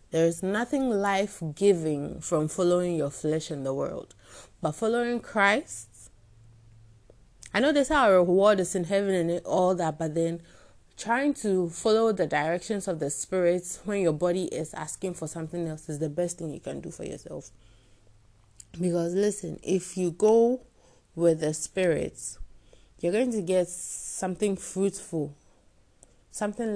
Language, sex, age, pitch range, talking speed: English, female, 30-49, 165-200 Hz, 150 wpm